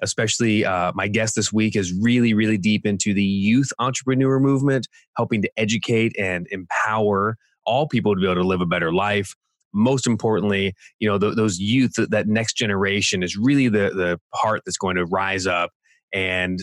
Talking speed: 180 wpm